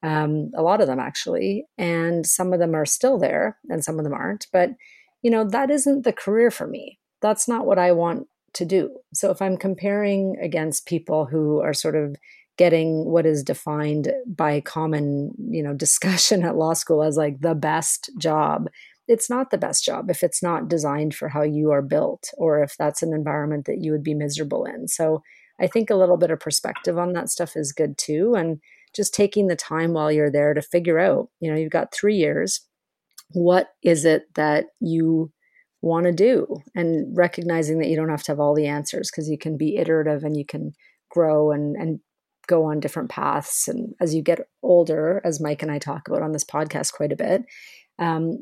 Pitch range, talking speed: 155-190 Hz, 210 wpm